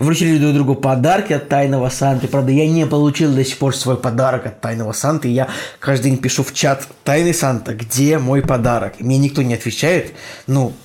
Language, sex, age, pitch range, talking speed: Russian, male, 20-39, 125-150 Hz, 195 wpm